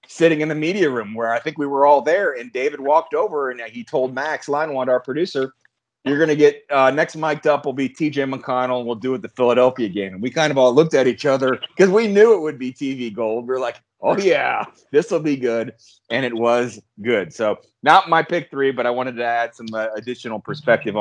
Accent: American